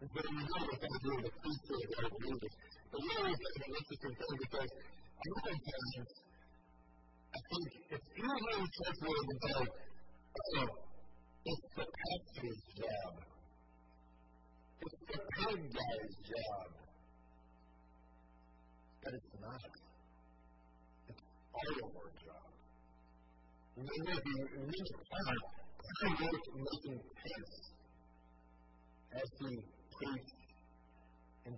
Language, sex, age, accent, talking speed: English, female, 40-59, American, 90 wpm